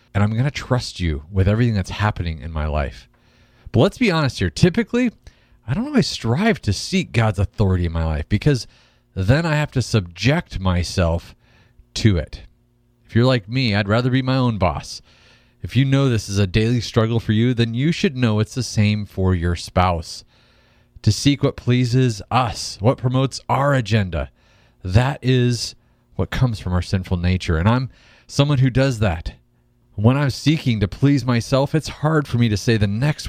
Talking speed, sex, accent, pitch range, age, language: 190 wpm, male, American, 100-130 Hz, 30-49, English